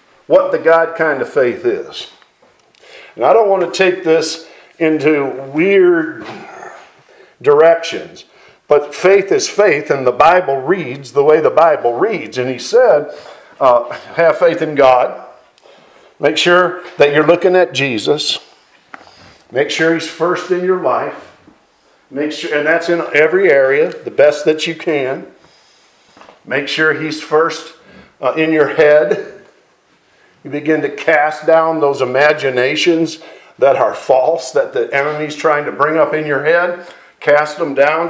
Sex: male